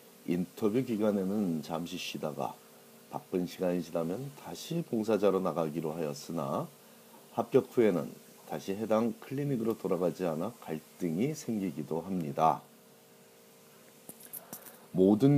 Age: 40-59